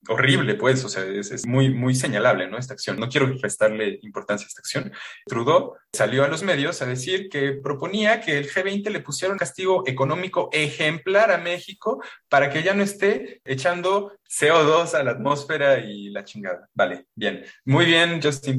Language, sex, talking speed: Spanish, male, 185 wpm